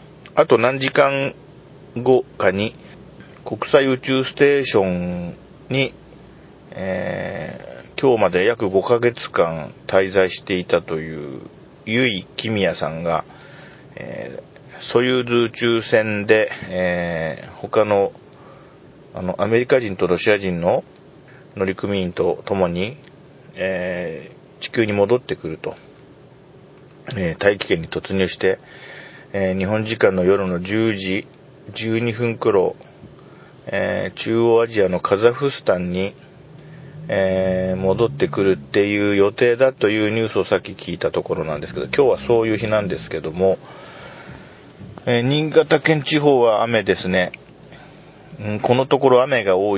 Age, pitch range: 40-59, 95-140 Hz